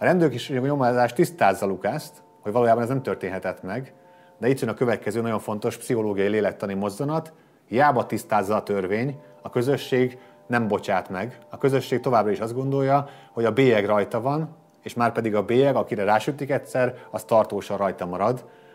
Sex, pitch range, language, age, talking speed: male, 100-130 Hz, Hungarian, 30-49, 170 wpm